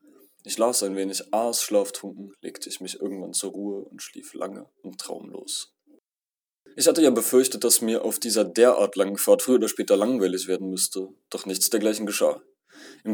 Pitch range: 95-130 Hz